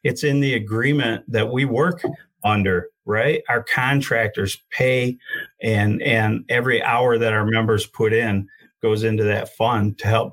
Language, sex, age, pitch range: English, male, 40-59, 105-145 Hz